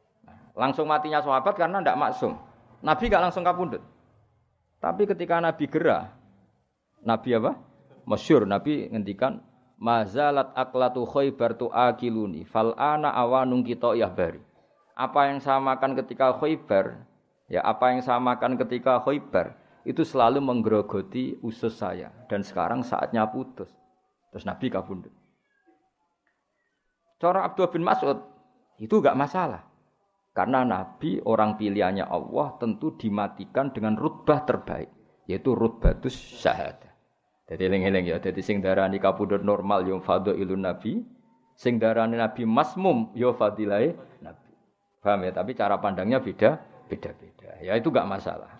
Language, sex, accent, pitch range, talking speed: Indonesian, male, native, 105-140 Hz, 125 wpm